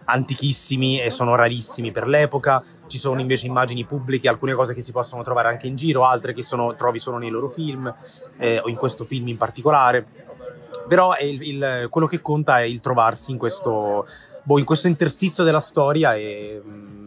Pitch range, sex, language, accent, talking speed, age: 120-155 Hz, male, Italian, native, 195 wpm, 30-49